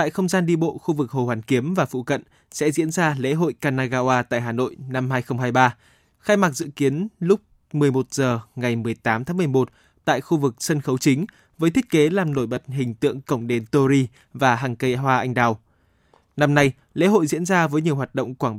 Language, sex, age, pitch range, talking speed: Vietnamese, male, 20-39, 125-165 Hz, 225 wpm